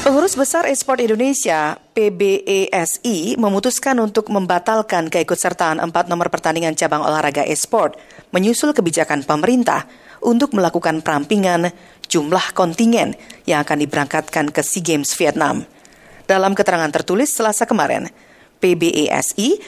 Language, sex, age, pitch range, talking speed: Indonesian, female, 40-59, 155-220 Hz, 110 wpm